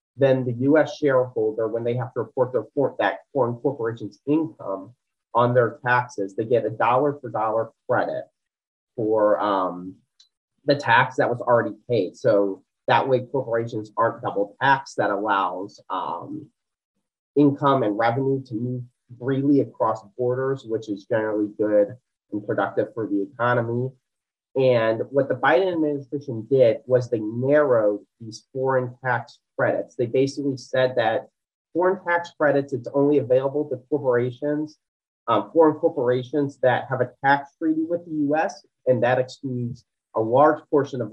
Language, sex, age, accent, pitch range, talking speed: English, male, 30-49, American, 115-145 Hz, 145 wpm